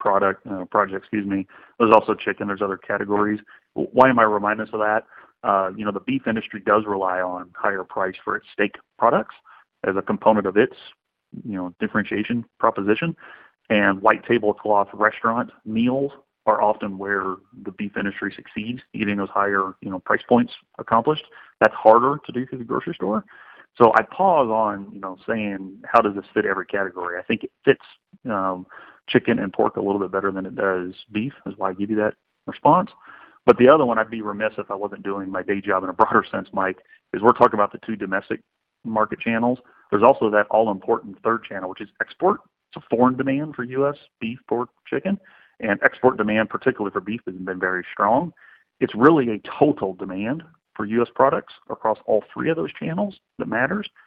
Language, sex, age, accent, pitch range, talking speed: English, male, 30-49, American, 100-115 Hz, 200 wpm